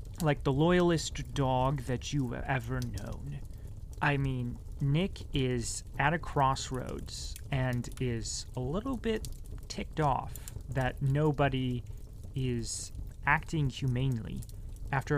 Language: English